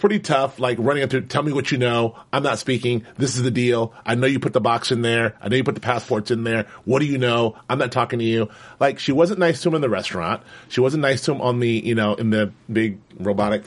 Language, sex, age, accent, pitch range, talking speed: English, male, 30-49, American, 110-140 Hz, 285 wpm